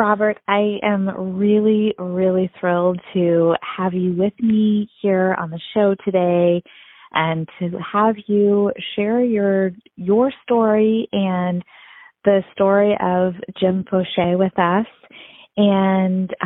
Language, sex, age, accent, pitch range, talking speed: English, female, 30-49, American, 180-220 Hz, 120 wpm